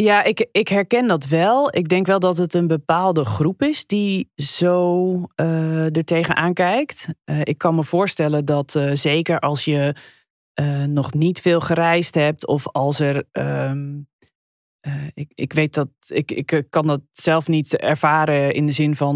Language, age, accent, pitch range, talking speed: Dutch, 20-39, Dutch, 145-160 Hz, 180 wpm